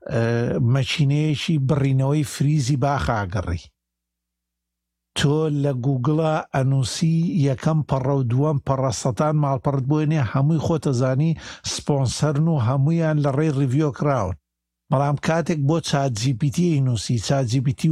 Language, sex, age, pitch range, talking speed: Arabic, male, 60-79, 120-145 Hz, 115 wpm